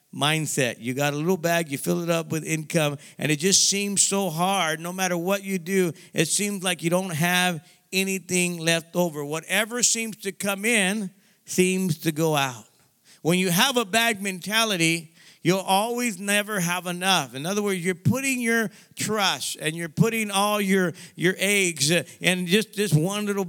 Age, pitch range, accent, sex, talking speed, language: 50-69, 170-200 Hz, American, male, 180 wpm, English